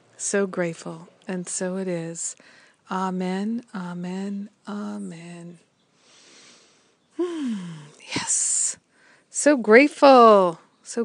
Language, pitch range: English, 185-225 Hz